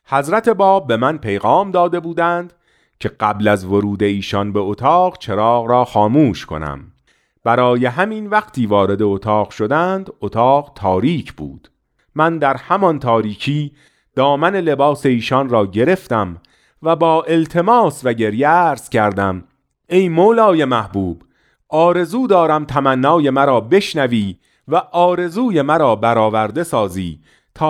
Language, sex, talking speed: Persian, male, 120 wpm